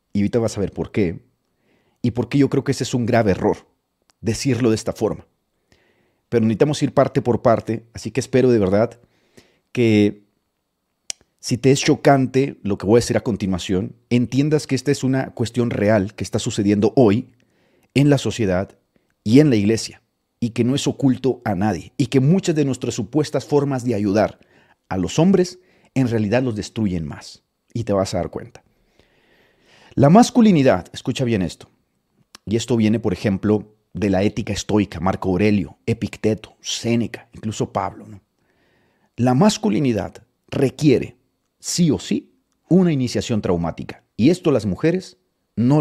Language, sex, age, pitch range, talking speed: Spanish, male, 40-59, 105-135 Hz, 170 wpm